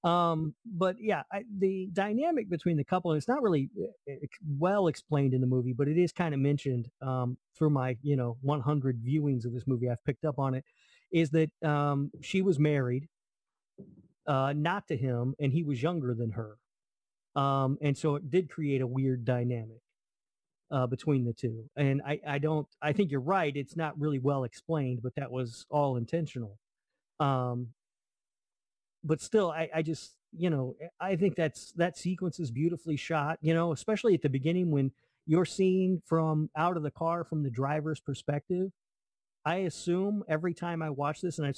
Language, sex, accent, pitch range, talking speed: English, male, American, 130-165 Hz, 185 wpm